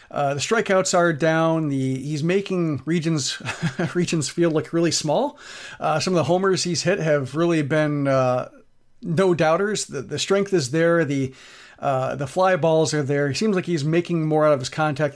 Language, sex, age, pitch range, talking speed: English, male, 40-59, 145-180 Hz, 195 wpm